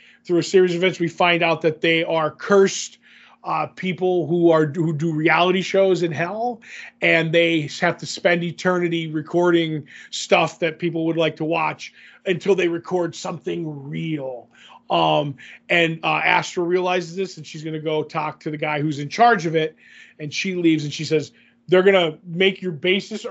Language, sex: English, male